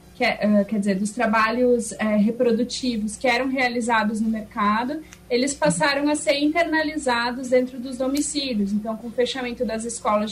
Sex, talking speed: female, 145 wpm